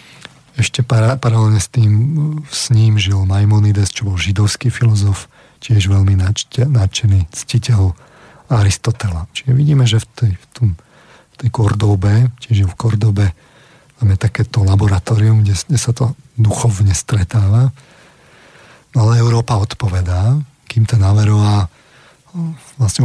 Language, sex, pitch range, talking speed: Slovak, male, 100-125 Hz, 110 wpm